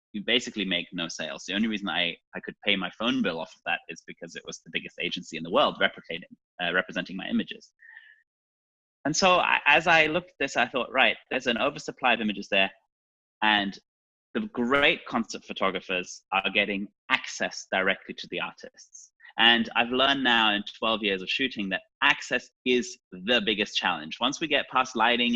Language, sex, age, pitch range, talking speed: English, male, 20-39, 100-145 Hz, 195 wpm